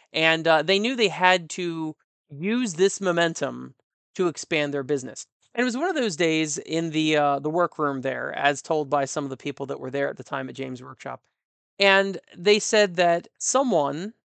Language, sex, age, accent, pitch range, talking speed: English, male, 30-49, American, 145-195 Hz, 200 wpm